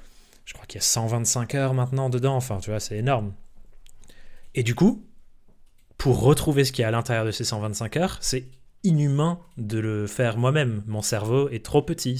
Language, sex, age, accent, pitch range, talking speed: French, male, 30-49, French, 110-130 Hz, 195 wpm